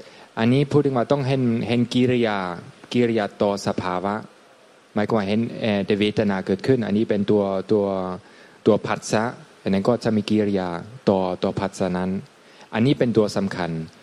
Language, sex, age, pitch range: Thai, male, 20-39, 95-120 Hz